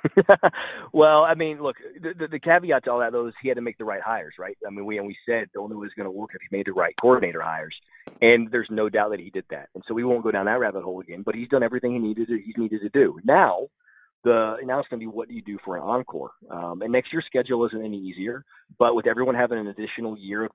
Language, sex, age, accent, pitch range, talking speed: English, male, 30-49, American, 100-120 Hz, 290 wpm